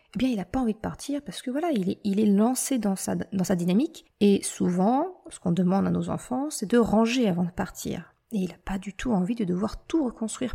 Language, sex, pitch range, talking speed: French, female, 190-240 Hz, 260 wpm